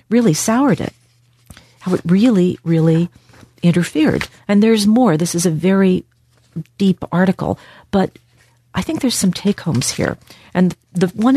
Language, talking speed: English, 145 wpm